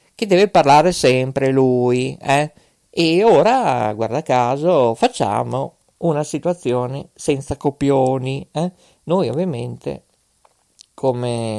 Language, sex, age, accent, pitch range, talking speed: Italian, male, 50-69, native, 120-170 Hz, 100 wpm